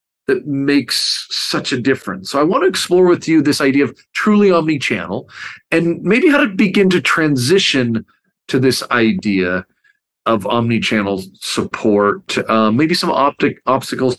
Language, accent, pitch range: English, American, 120-170 Hz